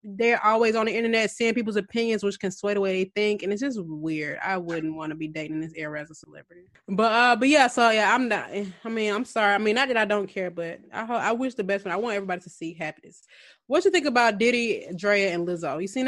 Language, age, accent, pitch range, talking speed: English, 20-39, American, 200-270 Hz, 270 wpm